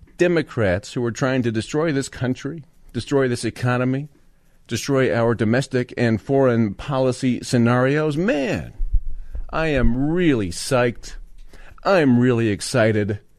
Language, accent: English, American